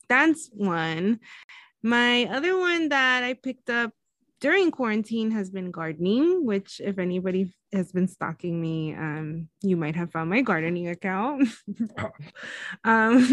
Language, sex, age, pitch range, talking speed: English, female, 20-39, 185-260 Hz, 135 wpm